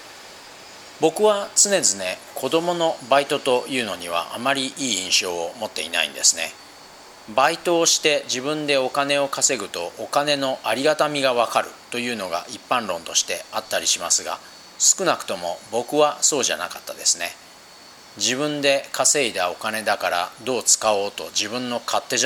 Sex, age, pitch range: male, 40-59, 115-140 Hz